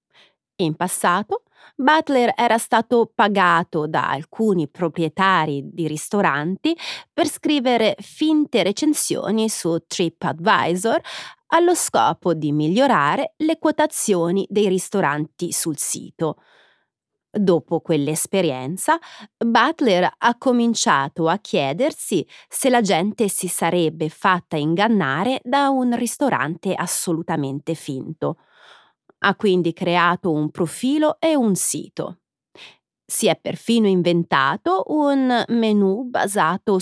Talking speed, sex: 100 wpm, female